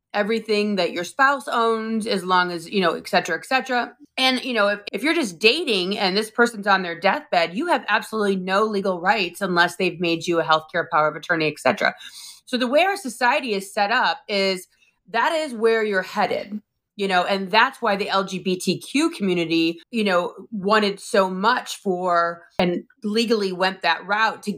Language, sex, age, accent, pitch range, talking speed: English, female, 30-49, American, 180-225 Hz, 195 wpm